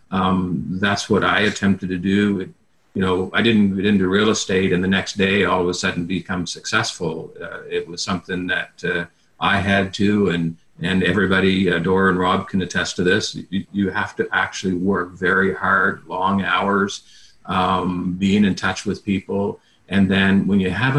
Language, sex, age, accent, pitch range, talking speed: English, male, 50-69, American, 90-105 Hz, 190 wpm